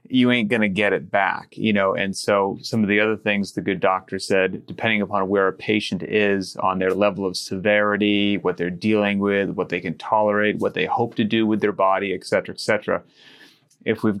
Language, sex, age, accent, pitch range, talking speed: English, male, 30-49, American, 95-110 Hz, 225 wpm